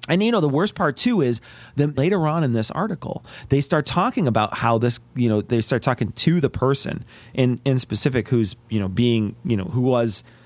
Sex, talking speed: male, 225 wpm